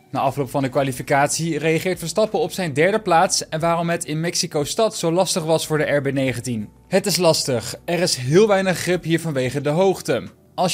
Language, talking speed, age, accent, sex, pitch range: Dutch, 200 wpm, 20-39, Dutch, male, 145-190 Hz